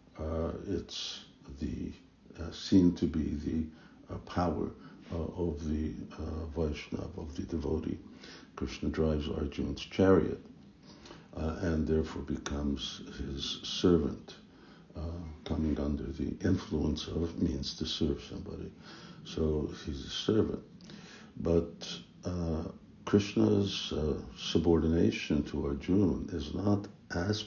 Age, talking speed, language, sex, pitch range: 60-79, 115 wpm, English, male, 75-85 Hz